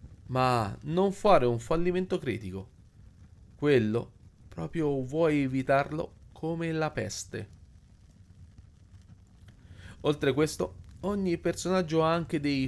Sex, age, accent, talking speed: male, 30-49, native, 100 wpm